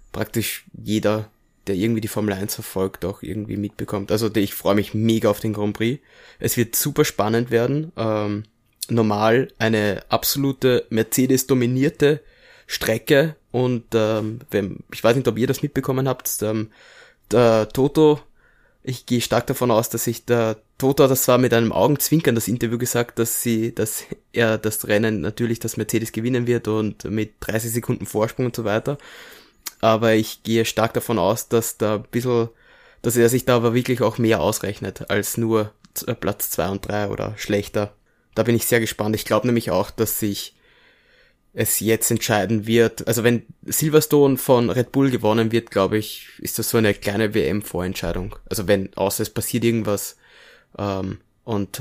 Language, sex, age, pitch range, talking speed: German, male, 20-39, 105-120 Hz, 170 wpm